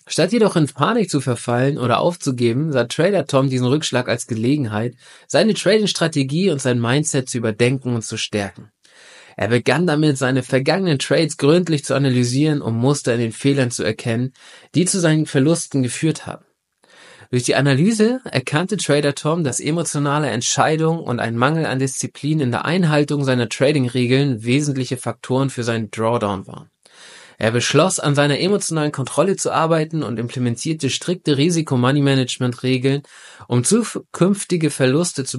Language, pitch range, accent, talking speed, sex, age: German, 120-155 Hz, German, 155 wpm, male, 20-39